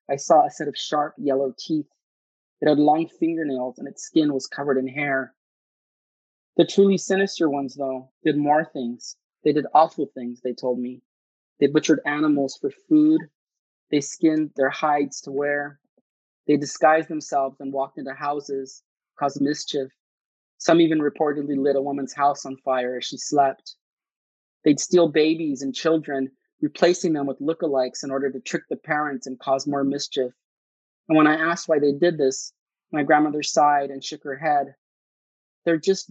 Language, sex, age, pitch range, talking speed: English, male, 30-49, 135-155 Hz, 170 wpm